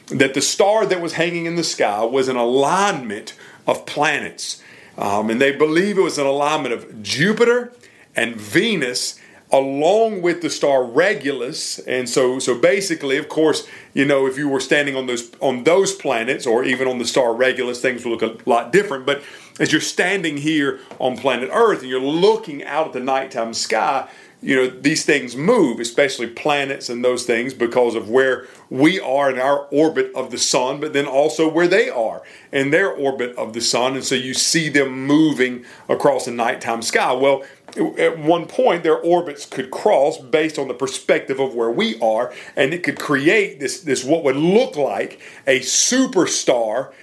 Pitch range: 125-165 Hz